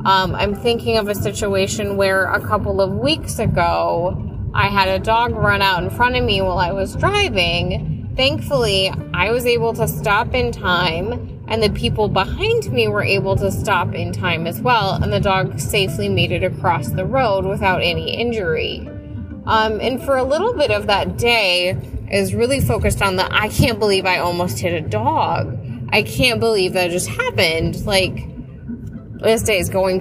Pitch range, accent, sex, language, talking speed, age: 165-220 Hz, American, female, English, 185 wpm, 20-39